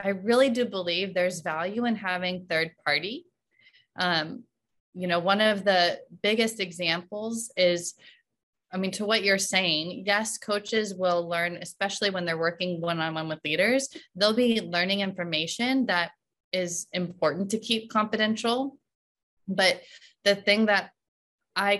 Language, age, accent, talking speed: English, 20-39, American, 145 wpm